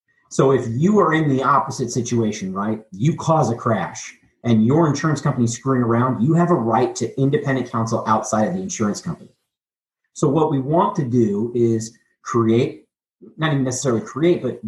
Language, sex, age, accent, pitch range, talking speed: English, male, 40-59, American, 115-155 Hz, 185 wpm